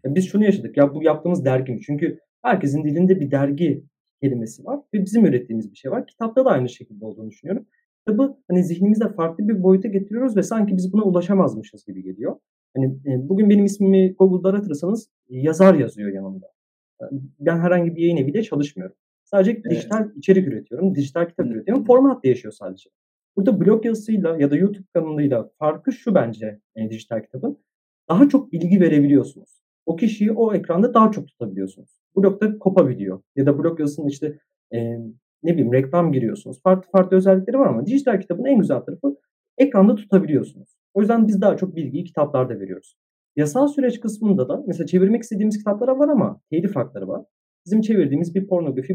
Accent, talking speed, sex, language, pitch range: native, 175 wpm, male, Turkish, 140-205 Hz